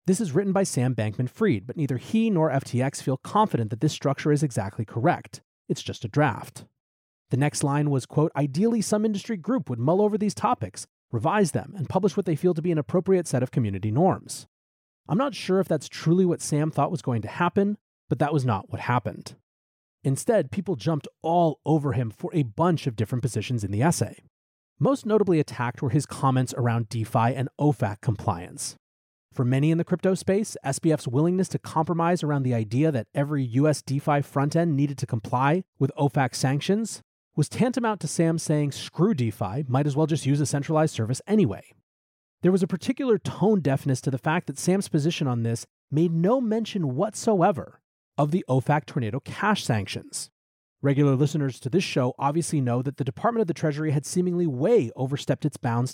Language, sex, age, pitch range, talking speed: English, male, 30-49, 125-175 Hz, 195 wpm